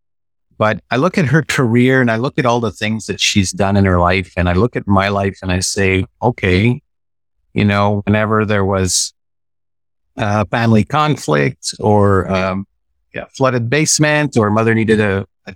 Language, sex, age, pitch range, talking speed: English, male, 50-69, 95-120 Hz, 180 wpm